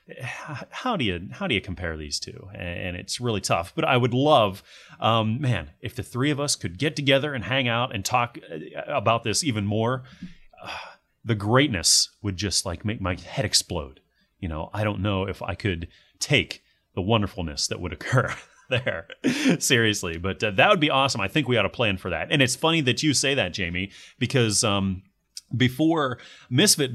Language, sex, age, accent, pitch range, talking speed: English, male, 30-49, American, 100-135 Hz, 195 wpm